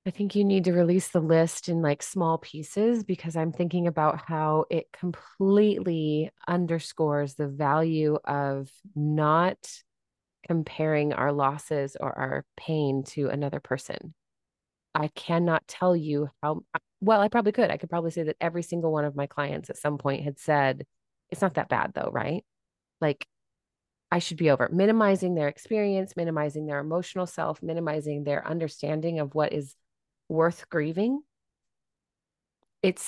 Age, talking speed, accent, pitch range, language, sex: 30-49, 155 wpm, American, 150-175 Hz, English, female